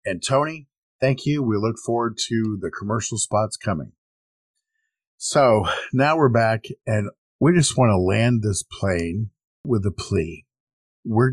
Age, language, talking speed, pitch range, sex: 50-69, English, 150 wpm, 95-130 Hz, male